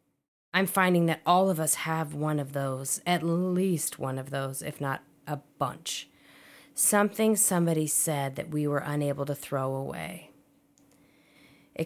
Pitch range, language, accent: 155-215 Hz, English, American